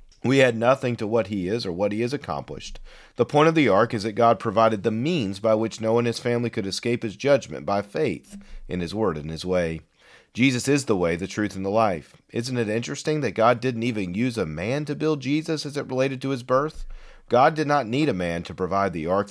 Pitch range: 105-135 Hz